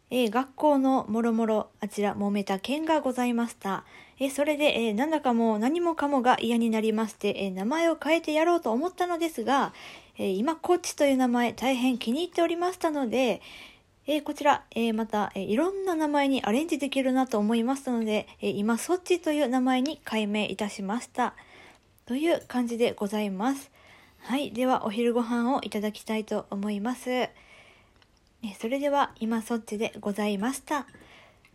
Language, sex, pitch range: Japanese, female, 220-295 Hz